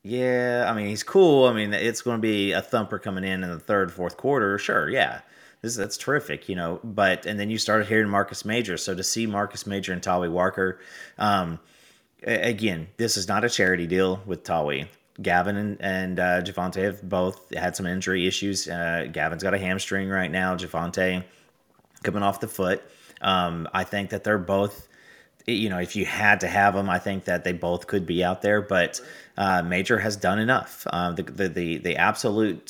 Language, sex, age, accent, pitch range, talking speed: English, male, 30-49, American, 90-105 Hz, 205 wpm